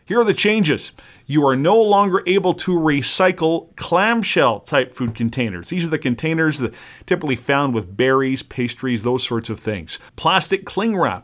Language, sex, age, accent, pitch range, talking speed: English, male, 40-59, American, 120-160 Hz, 165 wpm